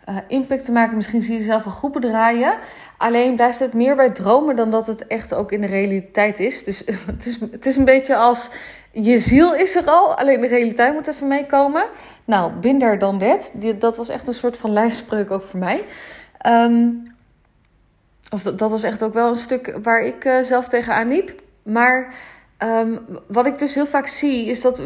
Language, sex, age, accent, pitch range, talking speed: Dutch, female, 20-39, Dutch, 210-250 Hz, 210 wpm